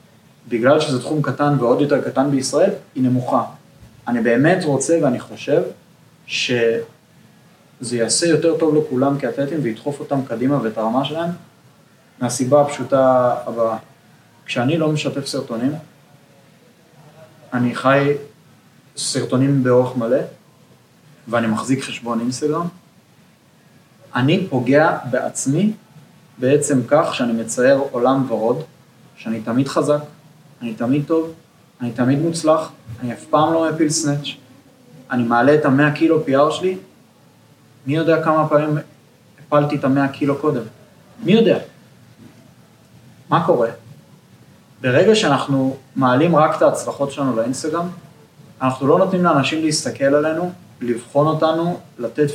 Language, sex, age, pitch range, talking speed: Hebrew, male, 20-39, 125-155 Hz, 120 wpm